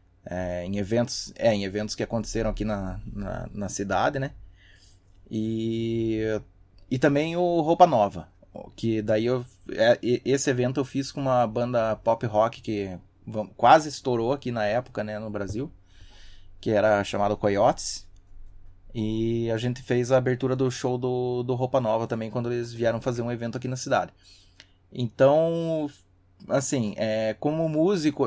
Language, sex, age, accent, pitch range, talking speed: Portuguese, male, 20-39, Brazilian, 100-130 Hz, 135 wpm